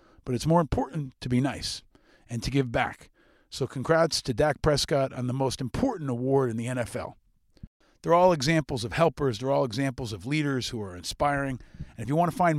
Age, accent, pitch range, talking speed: 40-59, American, 125-155 Hz, 200 wpm